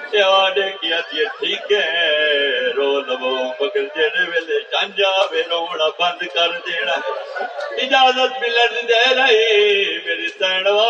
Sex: male